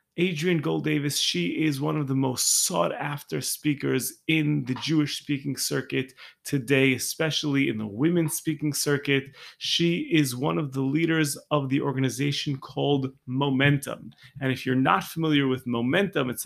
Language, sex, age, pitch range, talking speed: English, male, 30-49, 130-160 Hz, 155 wpm